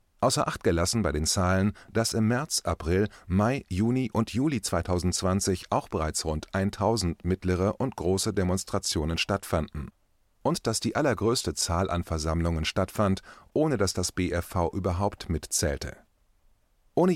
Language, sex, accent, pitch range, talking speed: German, male, German, 85-110 Hz, 135 wpm